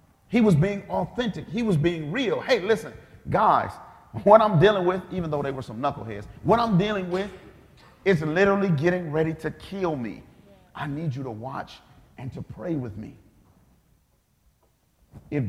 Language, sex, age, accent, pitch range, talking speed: English, male, 40-59, American, 115-165 Hz, 165 wpm